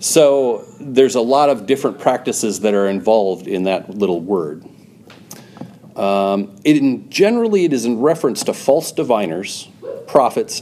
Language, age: English, 40-59